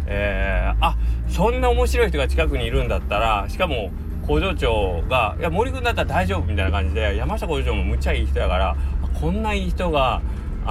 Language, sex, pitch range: Japanese, male, 70-90 Hz